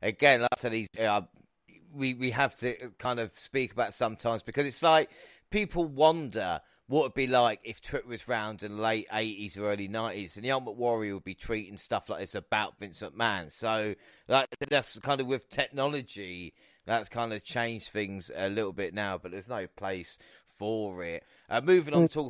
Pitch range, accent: 100-125 Hz, British